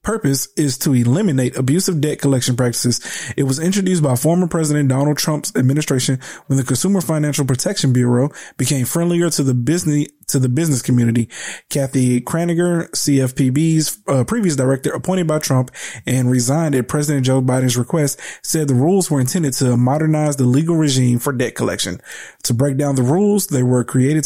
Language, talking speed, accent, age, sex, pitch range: English, 165 wpm, American, 20-39, male, 130-160 Hz